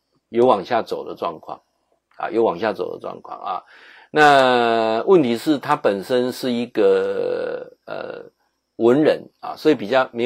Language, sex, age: Chinese, male, 50-69